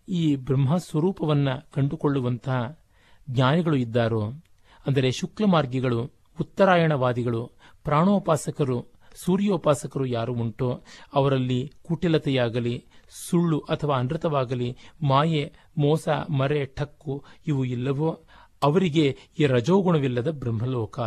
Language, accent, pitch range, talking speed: Kannada, native, 125-160 Hz, 75 wpm